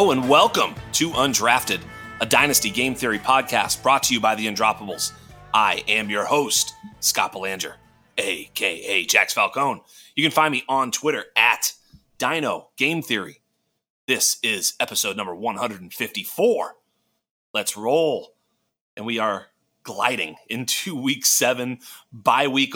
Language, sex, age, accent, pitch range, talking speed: English, male, 30-49, American, 115-145 Hz, 130 wpm